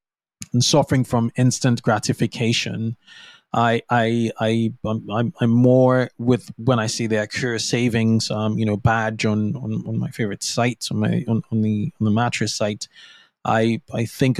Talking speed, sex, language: 165 wpm, male, English